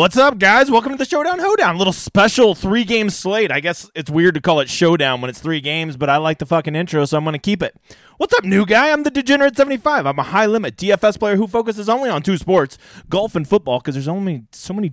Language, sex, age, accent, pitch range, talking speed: English, male, 30-49, American, 145-210 Hz, 255 wpm